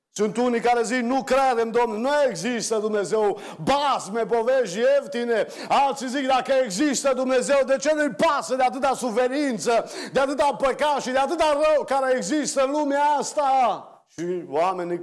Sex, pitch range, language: male, 185-270 Hz, Romanian